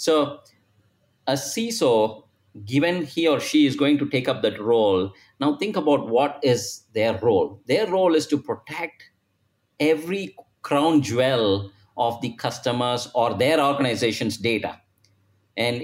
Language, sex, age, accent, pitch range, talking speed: English, male, 50-69, Indian, 120-160 Hz, 140 wpm